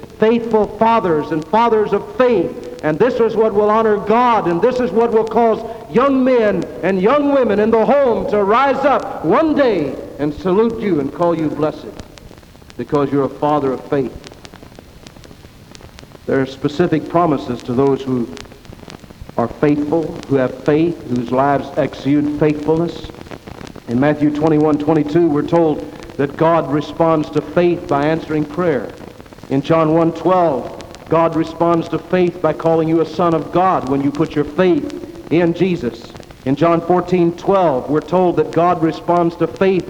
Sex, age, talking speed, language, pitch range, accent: male, 60-79, 160 wpm, English, 155-205 Hz, American